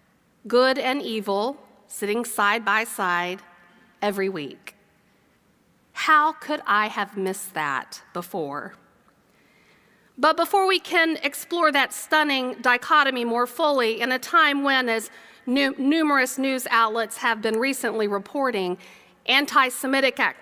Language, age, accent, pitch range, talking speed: English, 40-59, American, 210-265 Hz, 115 wpm